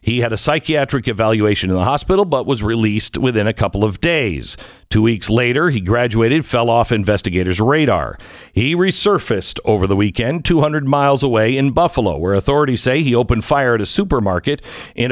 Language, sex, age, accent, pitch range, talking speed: English, male, 50-69, American, 110-155 Hz, 180 wpm